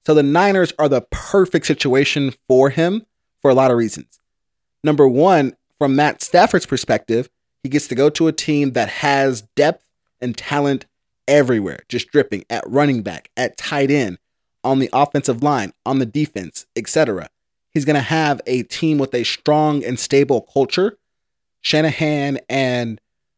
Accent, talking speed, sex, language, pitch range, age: American, 165 wpm, male, English, 125-150 Hz, 30-49